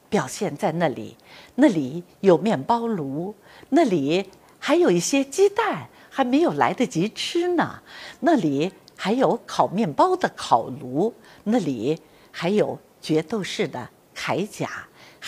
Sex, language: female, Chinese